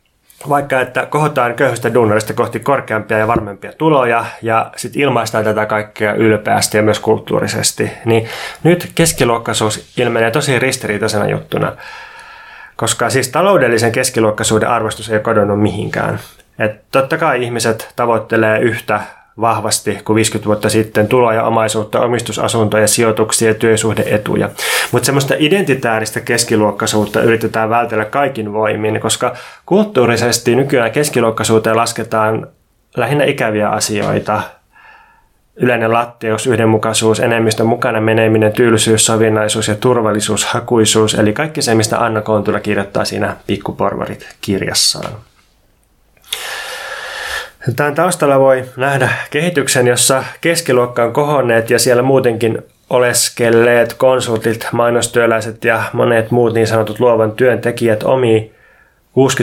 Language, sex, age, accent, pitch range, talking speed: Finnish, male, 20-39, native, 110-125 Hz, 115 wpm